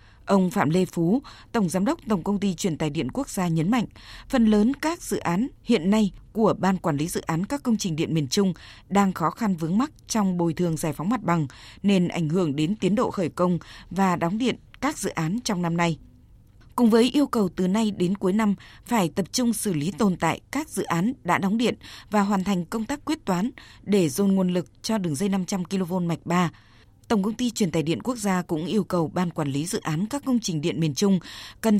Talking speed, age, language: 240 wpm, 20-39, Vietnamese